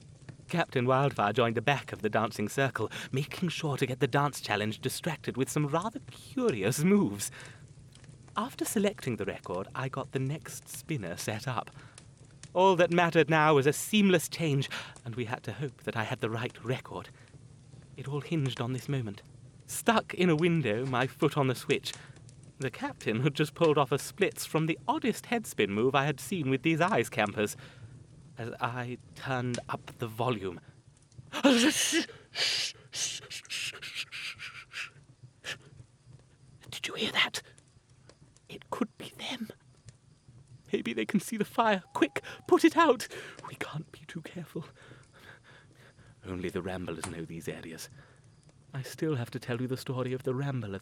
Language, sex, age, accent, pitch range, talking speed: English, male, 30-49, British, 125-150 Hz, 155 wpm